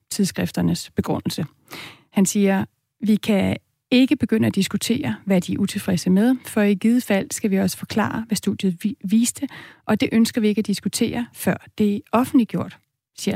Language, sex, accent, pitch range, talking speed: Danish, female, native, 185-230 Hz, 170 wpm